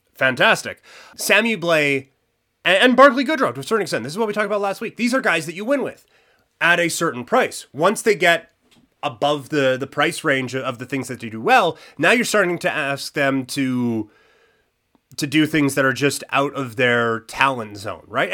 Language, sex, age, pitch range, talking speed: English, male, 30-49, 120-155 Hz, 205 wpm